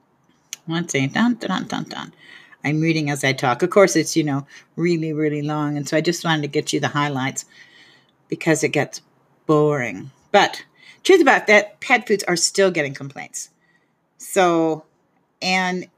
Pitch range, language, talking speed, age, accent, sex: 155-190 Hz, English, 170 wpm, 50-69, American, female